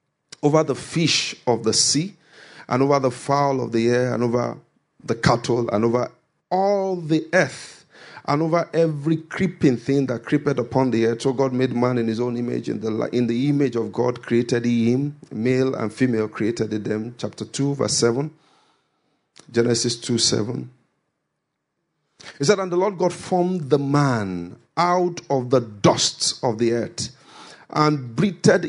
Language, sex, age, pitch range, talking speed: English, male, 50-69, 125-165 Hz, 165 wpm